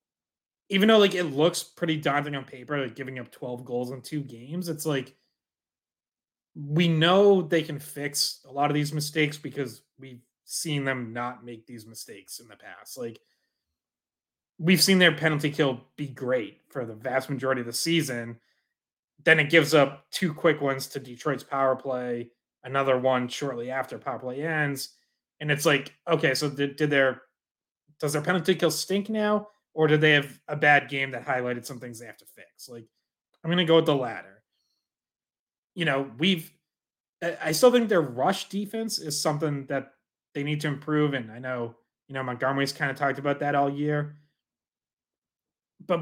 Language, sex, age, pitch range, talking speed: English, male, 30-49, 130-160 Hz, 185 wpm